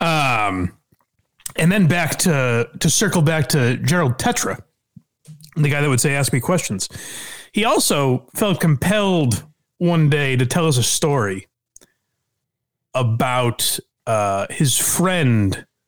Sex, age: male, 30-49